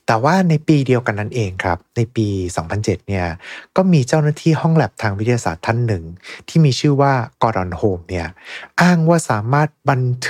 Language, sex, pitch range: Thai, male, 105-140 Hz